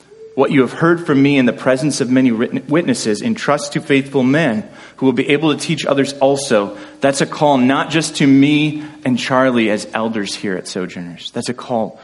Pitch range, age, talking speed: 140-190 Hz, 30-49, 205 wpm